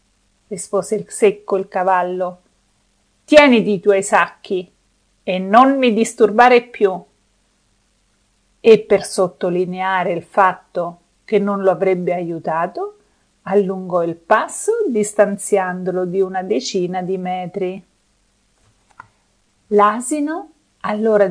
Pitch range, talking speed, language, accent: 185-235 Hz, 100 wpm, Italian, native